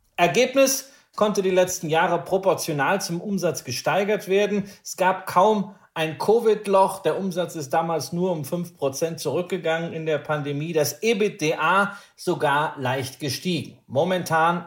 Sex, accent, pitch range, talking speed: male, German, 150-195 Hz, 130 wpm